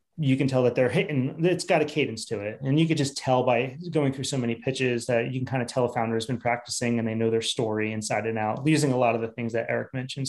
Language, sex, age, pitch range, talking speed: English, male, 30-49, 125-150 Hz, 295 wpm